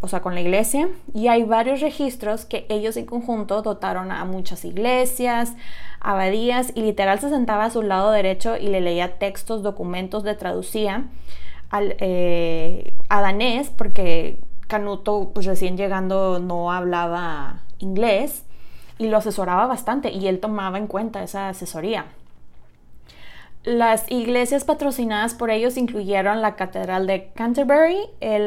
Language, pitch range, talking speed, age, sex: Spanish, 190-230 Hz, 140 wpm, 20-39, female